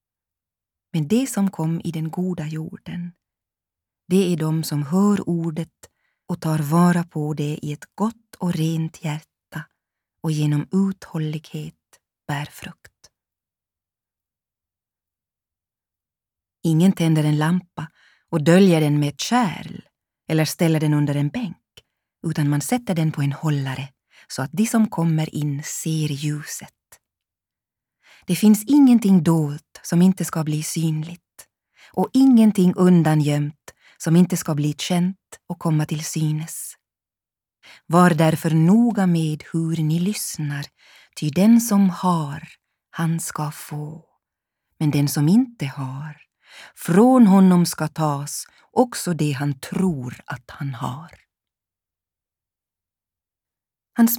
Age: 30-49